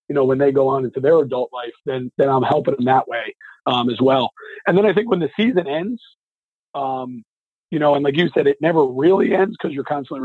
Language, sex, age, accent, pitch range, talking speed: English, male, 40-59, American, 125-145 Hz, 245 wpm